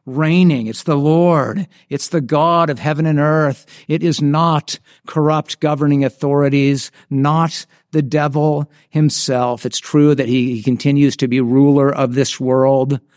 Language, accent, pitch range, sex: English, American, 125-150 Hz, male